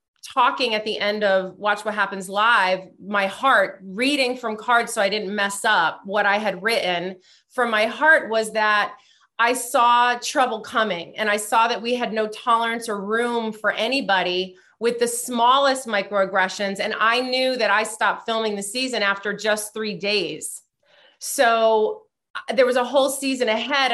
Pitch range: 205-255 Hz